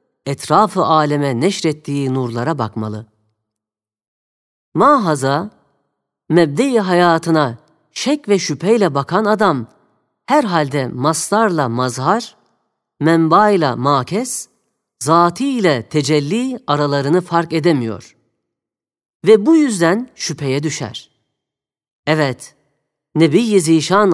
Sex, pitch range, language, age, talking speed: female, 135-200 Hz, Turkish, 40-59, 80 wpm